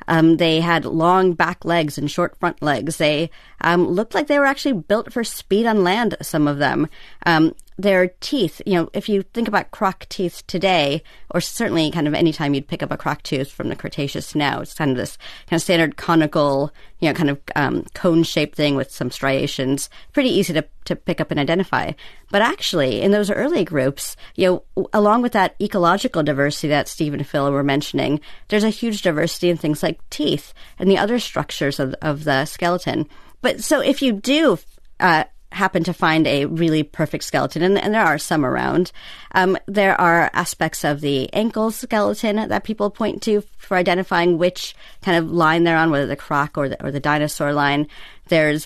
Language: English